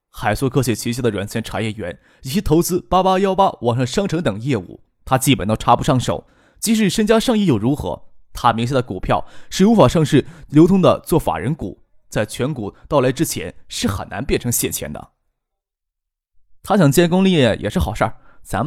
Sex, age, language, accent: male, 20-39, Chinese, native